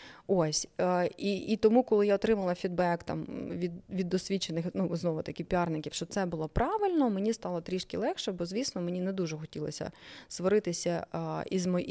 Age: 30-49